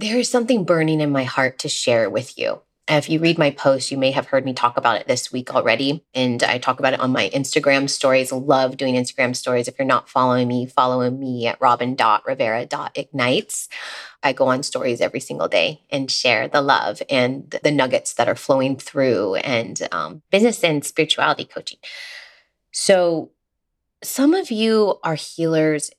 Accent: American